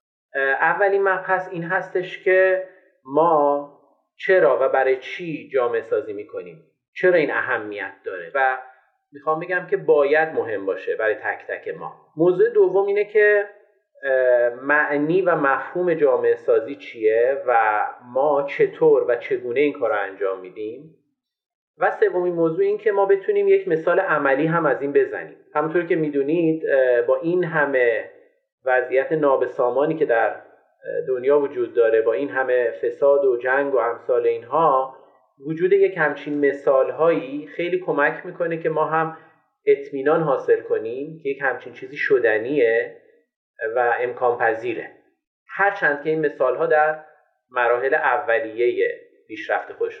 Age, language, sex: 30-49, Persian, male